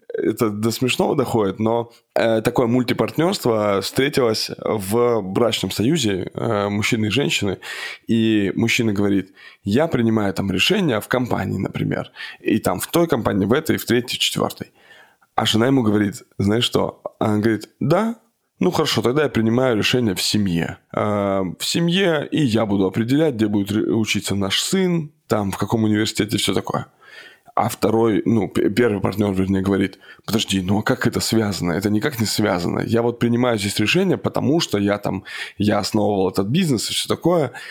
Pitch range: 100-125 Hz